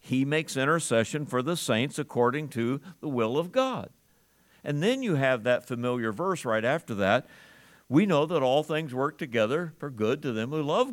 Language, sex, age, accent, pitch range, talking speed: English, male, 50-69, American, 125-160 Hz, 190 wpm